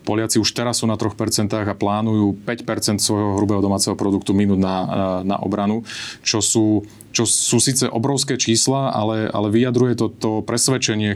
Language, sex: Slovak, male